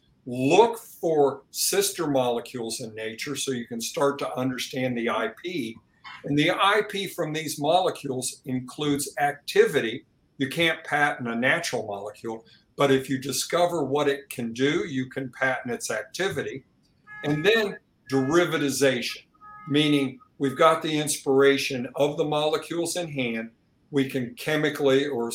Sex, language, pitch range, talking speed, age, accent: male, English, 130-155 Hz, 135 wpm, 50-69, American